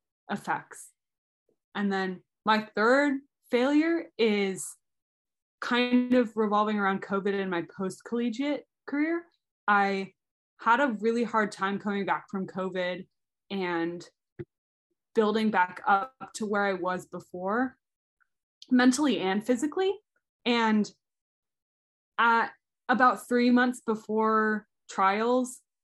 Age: 20-39